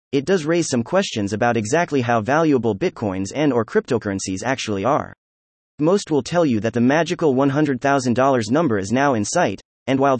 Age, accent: 30-49, American